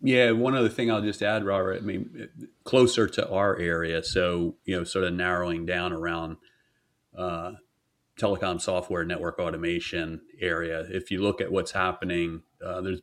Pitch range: 85-95 Hz